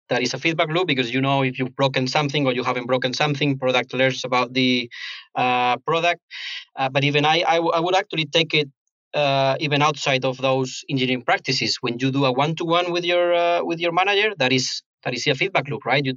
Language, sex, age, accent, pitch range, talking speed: English, male, 20-39, Spanish, 130-150 Hz, 235 wpm